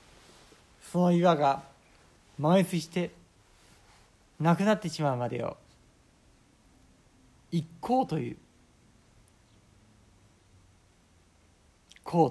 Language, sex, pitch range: Japanese, male, 95-155 Hz